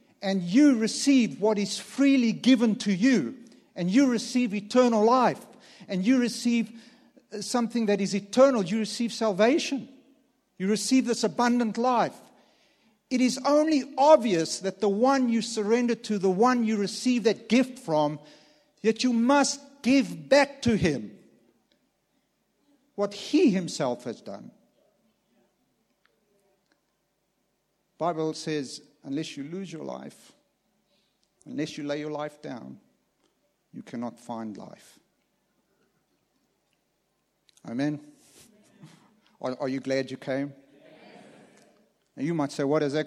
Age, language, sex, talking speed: 60-79, English, male, 125 wpm